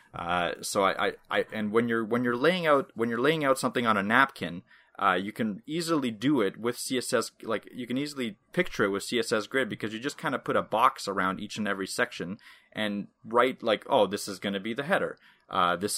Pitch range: 100-125 Hz